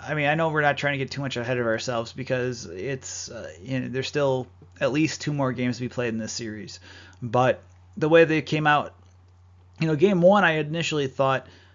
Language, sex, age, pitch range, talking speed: English, male, 30-49, 110-140 Hz, 230 wpm